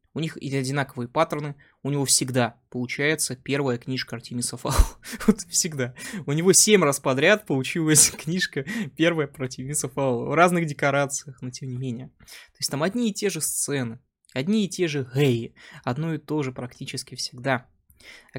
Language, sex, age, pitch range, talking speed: Russian, male, 20-39, 130-180 Hz, 165 wpm